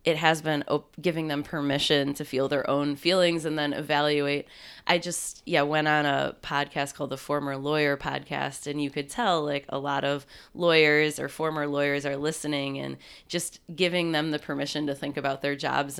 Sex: female